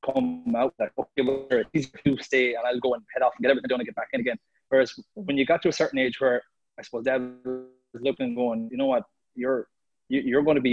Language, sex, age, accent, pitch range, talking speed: English, male, 20-39, Irish, 115-145 Hz, 270 wpm